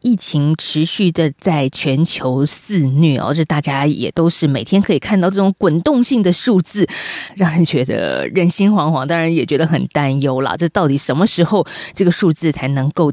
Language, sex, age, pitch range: Chinese, female, 20-39, 150-205 Hz